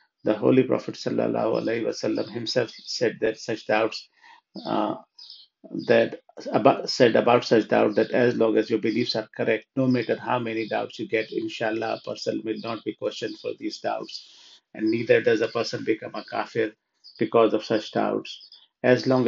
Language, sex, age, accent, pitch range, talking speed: English, male, 50-69, Indian, 110-120 Hz, 175 wpm